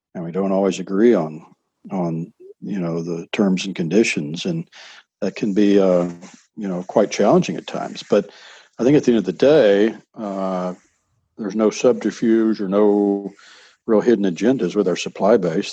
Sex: male